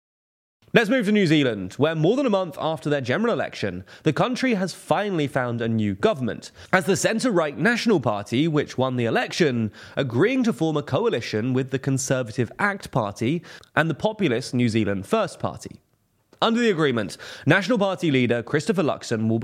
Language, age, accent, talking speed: English, 20-39, British, 175 wpm